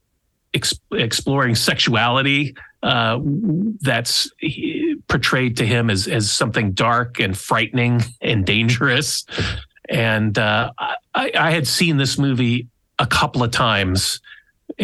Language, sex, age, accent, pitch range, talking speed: English, male, 40-59, American, 105-135 Hz, 115 wpm